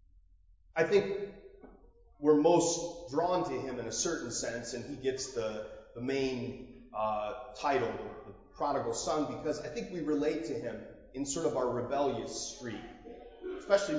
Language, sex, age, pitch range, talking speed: English, male, 30-49, 130-170 Hz, 155 wpm